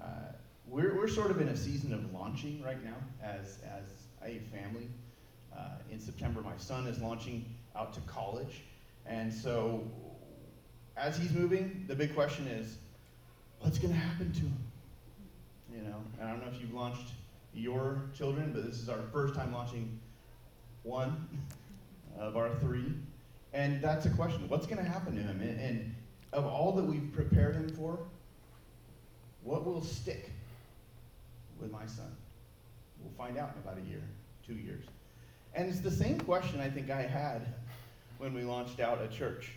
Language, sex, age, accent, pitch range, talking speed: English, male, 30-49, American, 115-140 Hz, 165 wpm